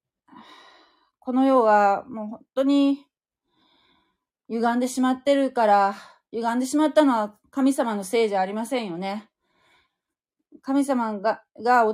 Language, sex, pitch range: Japanese, female, 210-285 Hz